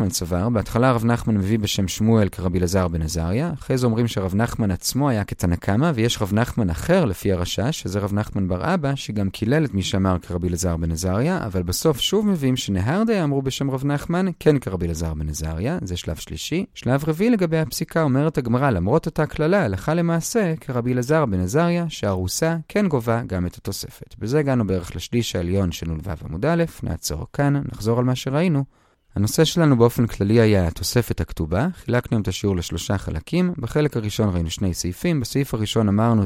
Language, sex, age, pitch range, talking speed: Hebrew, male, 30-49, 95-140 Hz, 140 wpm